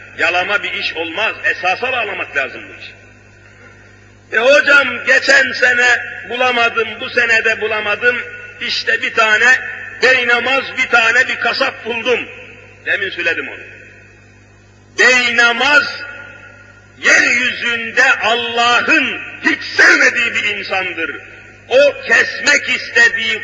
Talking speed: 100 wpm